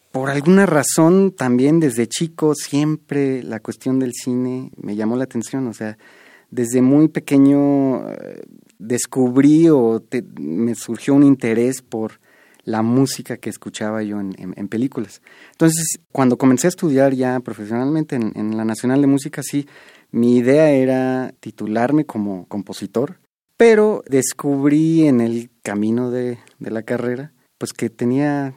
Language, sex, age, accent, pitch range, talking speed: Spanish, male, 30-49, Mexican, 110-140 Hz, 145 wpm